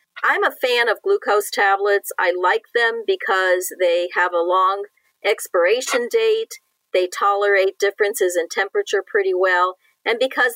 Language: English